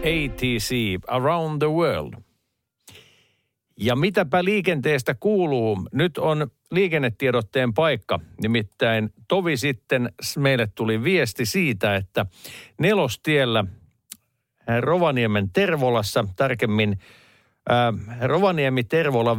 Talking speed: 75 wpm